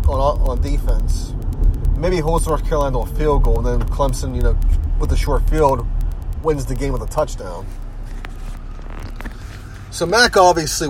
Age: 30-49